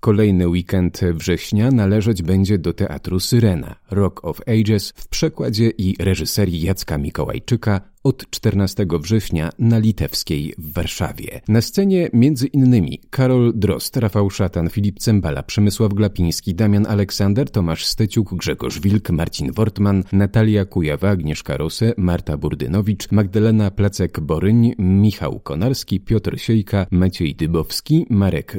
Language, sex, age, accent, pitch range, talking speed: Polish, male, 40-59, native, 90-110 Hz, 125 wpm